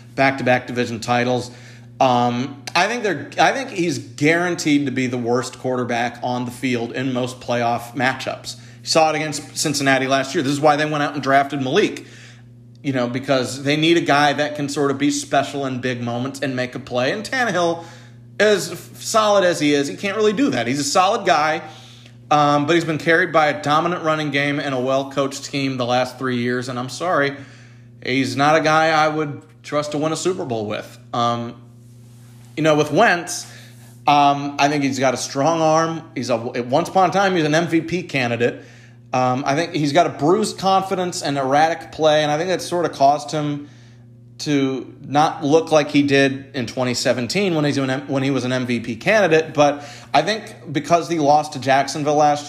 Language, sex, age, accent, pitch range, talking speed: English, male, 40-59, American, 125-155 Hz, 200 wpm